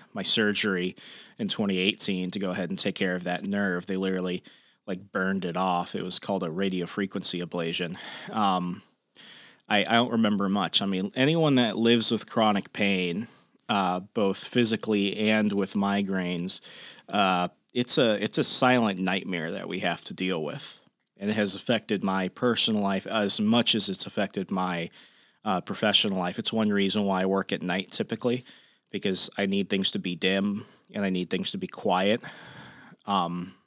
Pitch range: 95-110 Hz